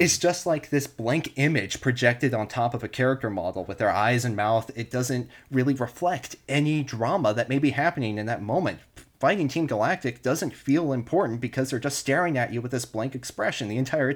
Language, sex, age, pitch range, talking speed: English, male, 30-49, 115-145 Hz, 210 wpm